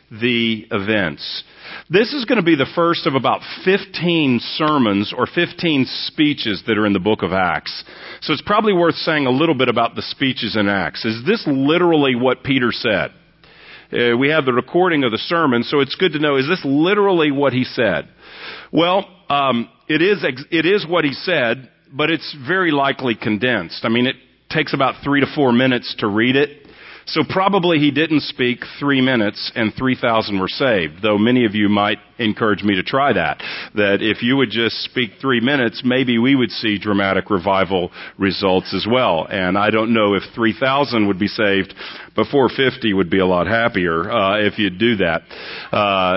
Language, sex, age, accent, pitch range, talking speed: English, male, 50-69, American, 110-160 Hz, 190 wpm